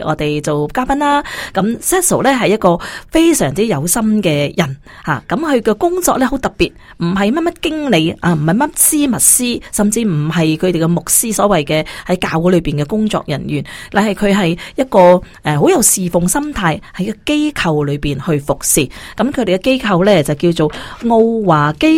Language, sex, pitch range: Chinese, female, 165-220 Hz